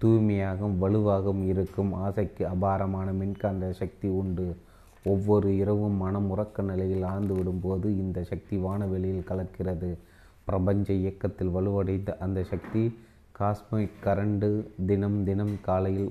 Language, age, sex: Tamil, 30-49, male